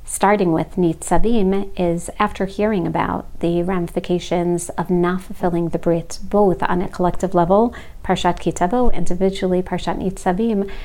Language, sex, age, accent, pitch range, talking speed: English, female, 40-59, American, 170-195 Hz, 135 wpm